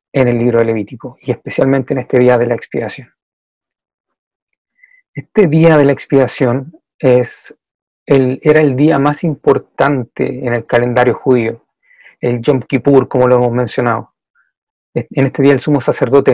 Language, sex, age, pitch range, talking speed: Spanish, male, 30-49, 125-145 Hz, 150 wpm